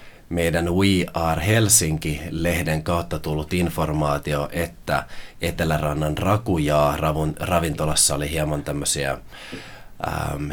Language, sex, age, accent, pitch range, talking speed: Finnish, male, 30-49, native, 75-90 Hz, 80 wpm